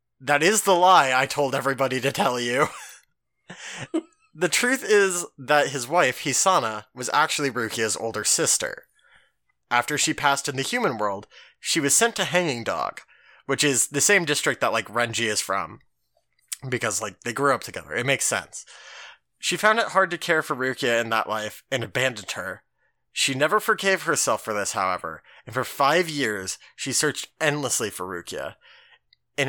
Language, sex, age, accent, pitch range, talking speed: English, male, 20-39, American, 120-175 Hz, 175 wpm